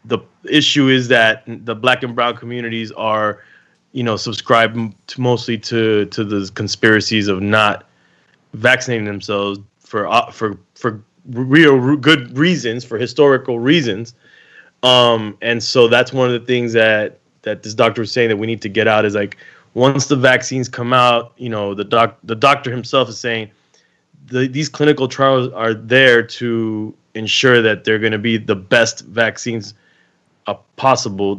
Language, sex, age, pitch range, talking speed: English, male, 20-39, 100-125 Hz, 165 wpm